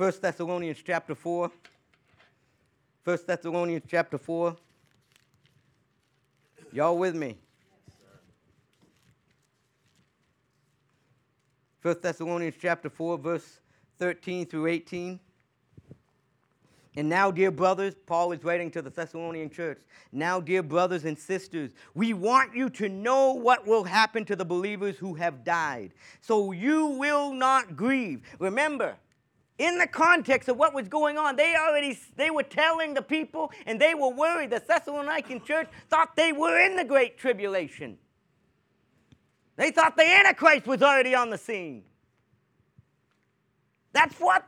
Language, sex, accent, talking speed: English, male, American, 130 wpm